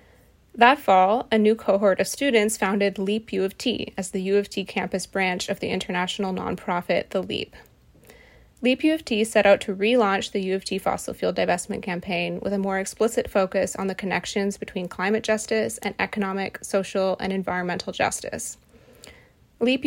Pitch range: 190-225 Hz